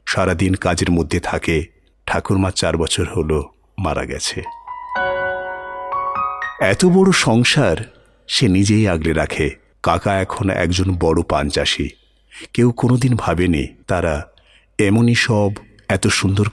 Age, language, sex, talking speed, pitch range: 50-69, Bengali, male, 115 wpm, 90-125 Hz